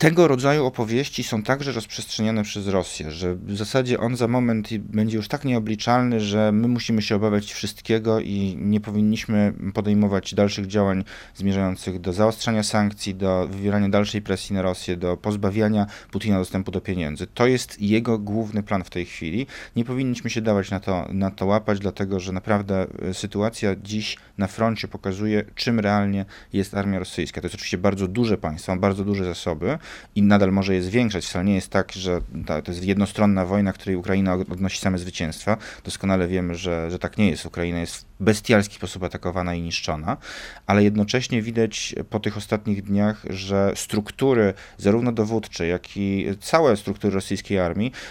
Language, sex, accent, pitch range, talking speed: Polish, male, native, 95-110 Hz, 170 wpm